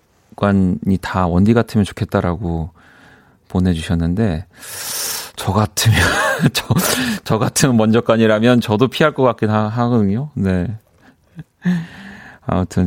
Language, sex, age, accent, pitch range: Korean, male, 40-59, native, 95-130 Hz